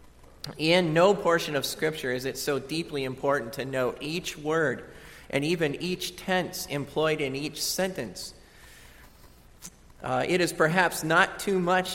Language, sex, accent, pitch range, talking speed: English, male, American, 135-170 Hz, 145 wpm